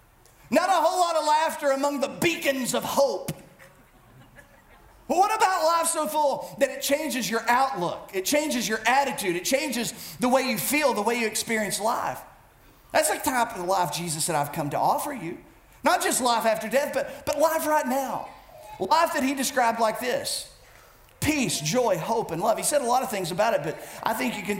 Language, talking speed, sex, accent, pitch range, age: English, 200 wpm, male, American, 220-295 Hz, 40-59